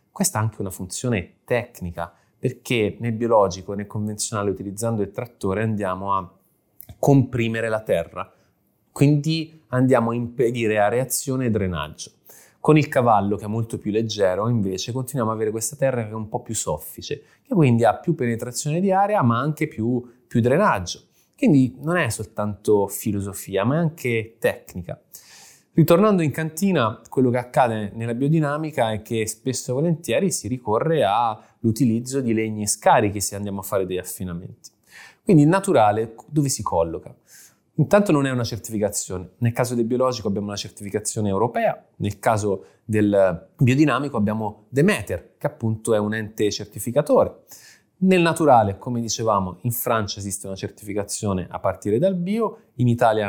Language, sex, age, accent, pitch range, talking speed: Italian, male, 20-39, native, 105-130 Hz, 160 wpm